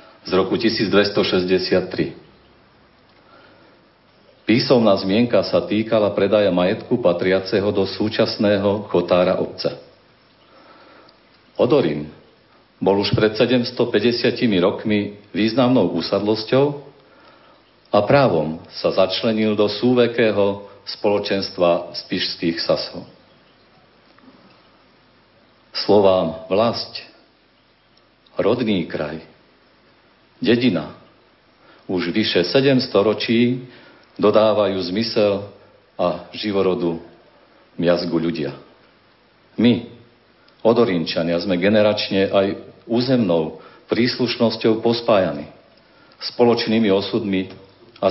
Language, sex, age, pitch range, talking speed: Slovak, male, 50-69, 95-115 Hz, 70 wpm